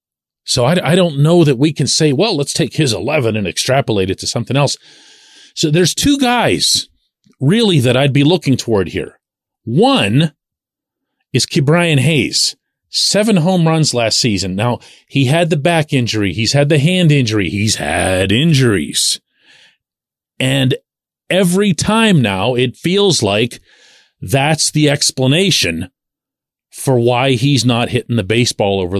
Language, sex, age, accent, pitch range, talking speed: English, male, 40-59, American, 120-165 Hz, 150 wpm